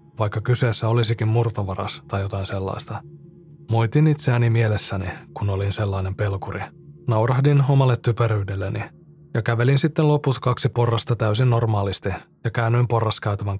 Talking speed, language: 120 wpm, Finnish